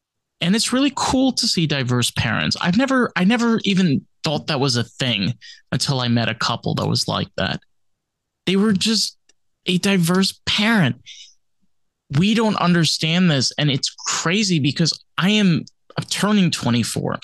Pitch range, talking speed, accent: 125-185 Hz, 155 wpm, American